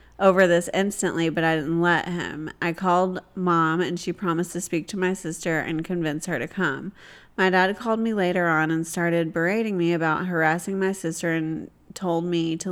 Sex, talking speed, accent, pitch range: female, 200 wpm, American, 160-185 Hz